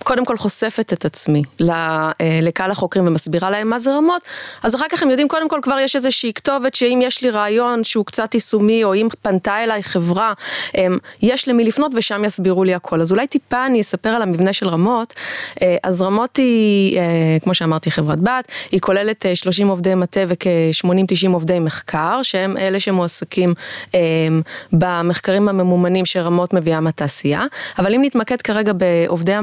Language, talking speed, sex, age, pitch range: Hebrew, 150 wpm, female, 20-39, 175-225 Hz